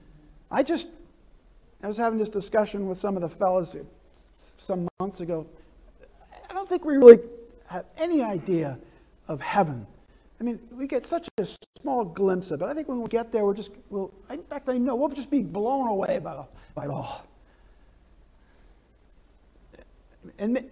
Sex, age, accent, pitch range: male, 50-69, American, 180-240 Hz